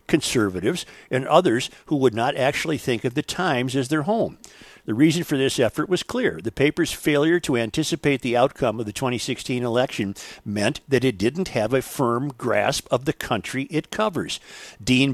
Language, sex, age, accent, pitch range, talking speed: English, male, 50-69, American, 125-165 Hz, 180 wpm